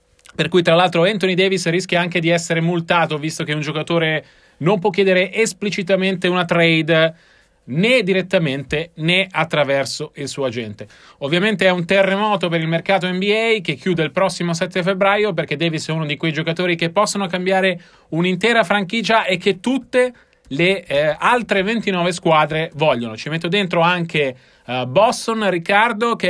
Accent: native